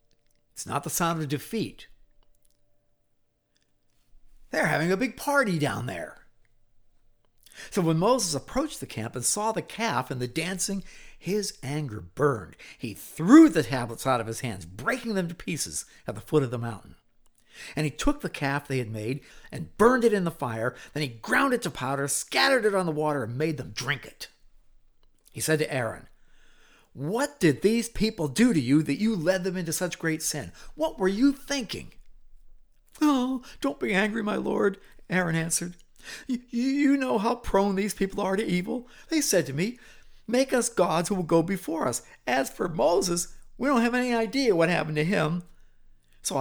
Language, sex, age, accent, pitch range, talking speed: English, male, 50-69, American, 135-215 Hz, 185 wpm